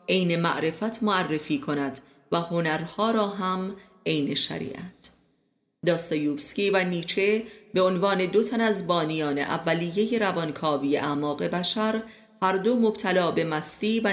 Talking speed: 120 wpm